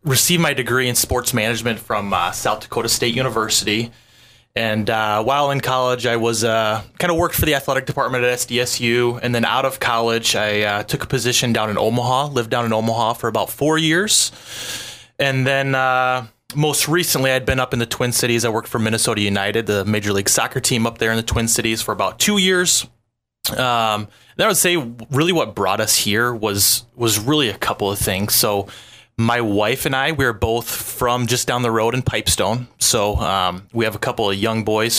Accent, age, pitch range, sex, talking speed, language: American, 20-39, 110-130 Hz, male, 205 wpm, English